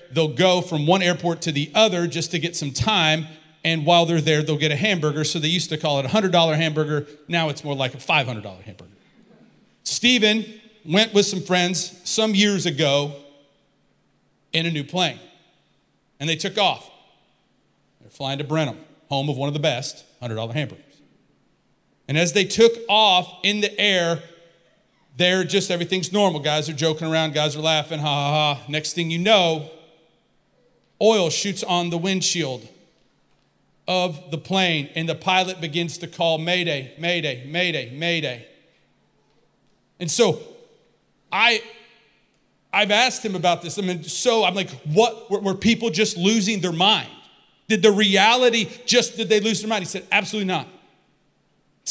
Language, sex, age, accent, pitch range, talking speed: English, male, 40-59, American, 155-205 Hz, 165 wpm